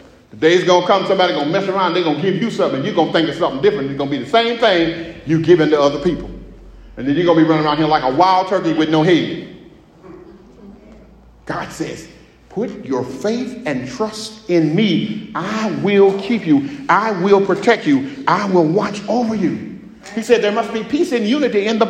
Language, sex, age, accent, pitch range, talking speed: English, male, 50-69, American, 160-230 Hz, 225 wpm